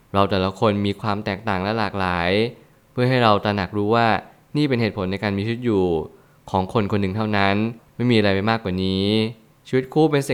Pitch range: 100-125 Hz